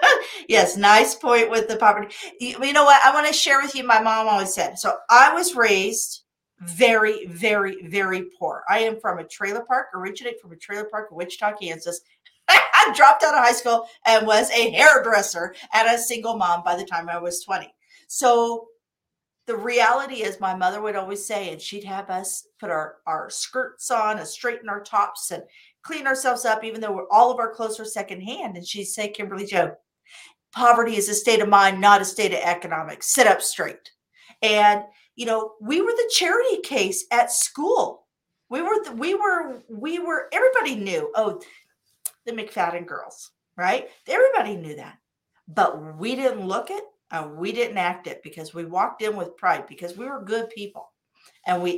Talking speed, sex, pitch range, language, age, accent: 190 wpm, female, 190-245 Hz, English, 50-69, American